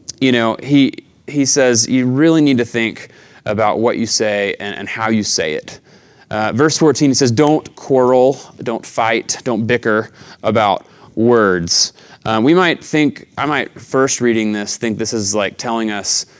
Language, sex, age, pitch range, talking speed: English, male, 20-39, 115-145 Hz, 175 wpm